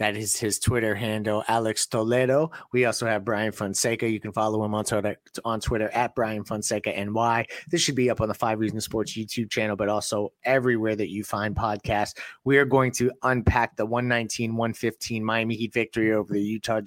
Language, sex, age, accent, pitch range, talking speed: English, male, 30-49, American, 110-120 Hz, 190 wpm